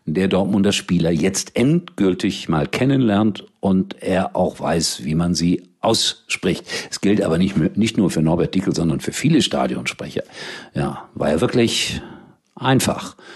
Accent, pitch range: German, 90-145 Hz